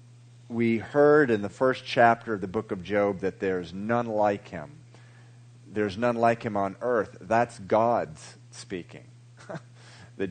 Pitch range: 100-120 Hz